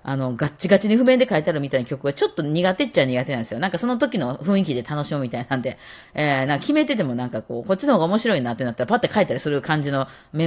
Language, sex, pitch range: Japanese, female, 130-205 Hz